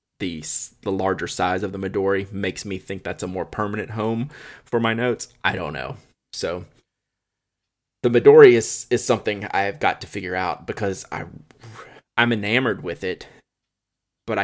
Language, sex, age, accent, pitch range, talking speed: English, male, 20-39, American, 95-120 Hz, 160 wpm